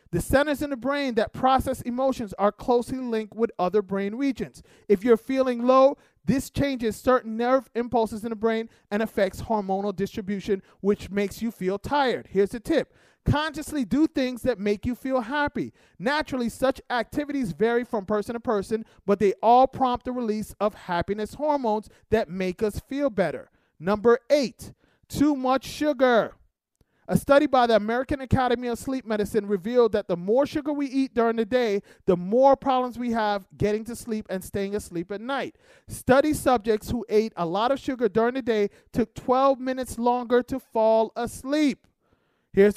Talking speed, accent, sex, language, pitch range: 175 wpm, American, male, English, 210-265 Hz